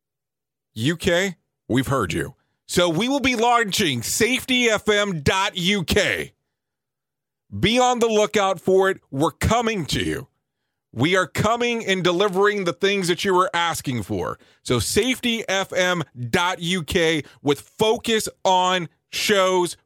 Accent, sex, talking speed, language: American, male, 115 wpm, English